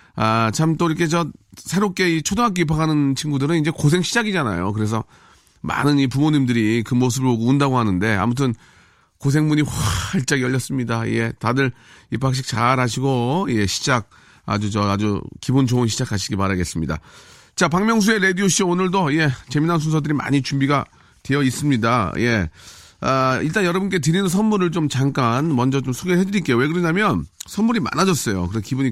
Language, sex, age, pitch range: Korean, male, 40-59, 120-180 Hz